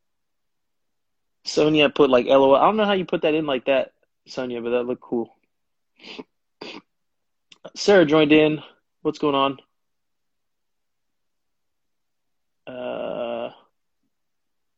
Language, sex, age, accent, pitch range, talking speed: English, male, 20-39, American, 125-155 Hz, 105 wpm